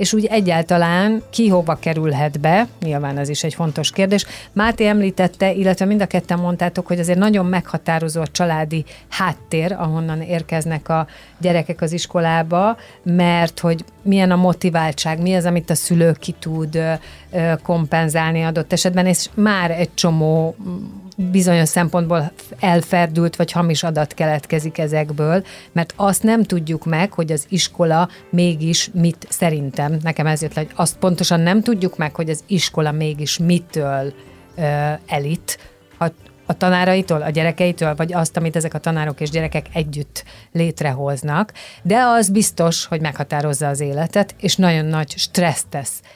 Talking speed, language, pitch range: 145 wpm, Hungarian, 150-180 Hz